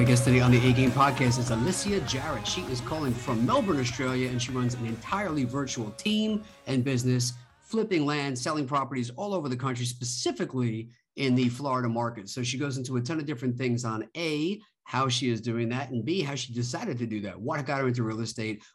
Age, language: 50-69, English